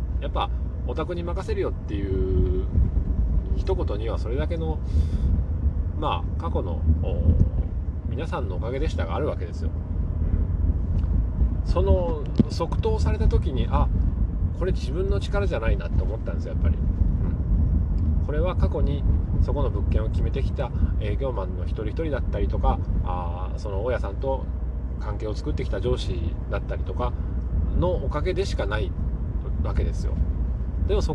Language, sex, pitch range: Japanese, male, 80-90 Hz